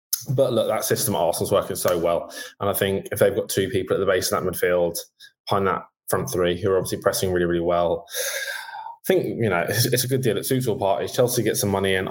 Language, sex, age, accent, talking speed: English, male, 20-39, British, 260 wpm